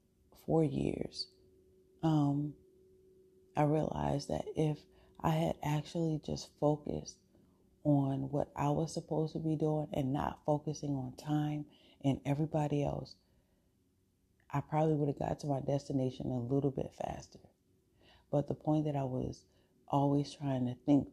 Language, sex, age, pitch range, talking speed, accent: English, female, 30-49, 125-145 Hz, 140 wpm, American